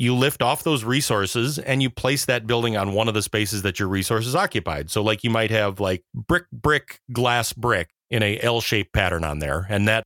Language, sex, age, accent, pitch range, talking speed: English, male, 30-49, American, 100-125 Hz, 220 wpm